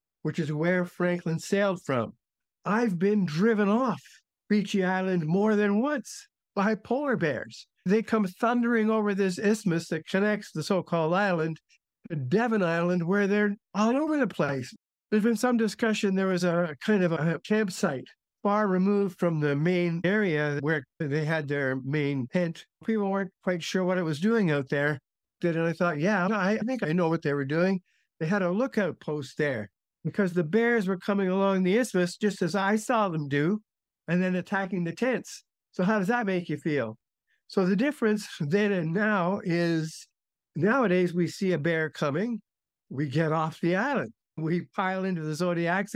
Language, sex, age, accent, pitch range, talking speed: English, male, 60-79, American, 165-210 Hz, 180 wpm